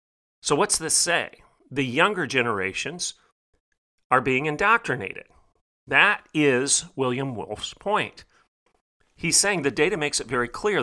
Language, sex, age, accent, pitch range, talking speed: English, male, 40-59, American, 115-150 Hz, 125 wpm